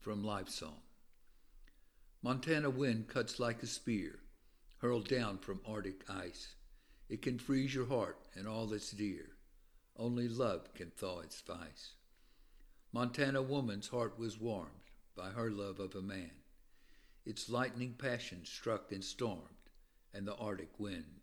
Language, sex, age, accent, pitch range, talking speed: English, male, 60-79, American, 100-125 Hz, 140 wpm